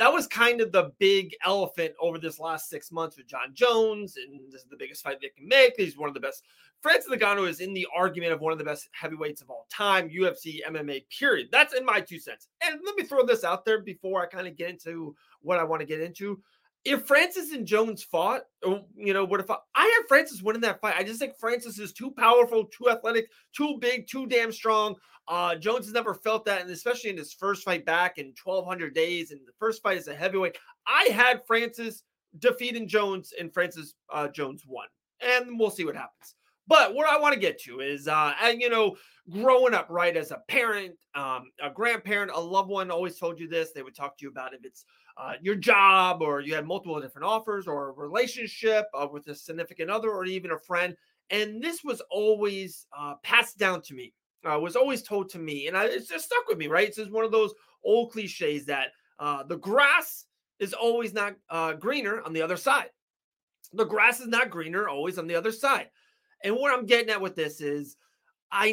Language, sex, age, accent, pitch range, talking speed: English, male, 30-49, American, 165-230 Hz, 225 wpm